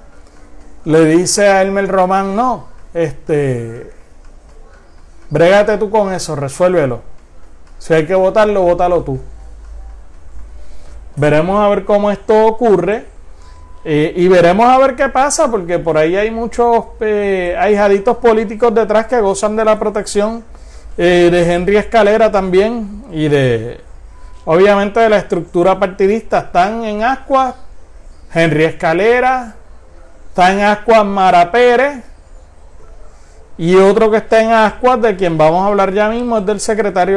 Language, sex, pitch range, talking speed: Spanish, male, 155-215 Hz, 135 wpm